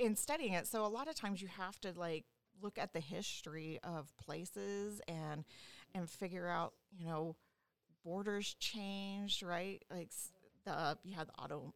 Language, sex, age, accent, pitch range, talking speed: English, female, 40-59, American, 165-200 Hz, 175 wpm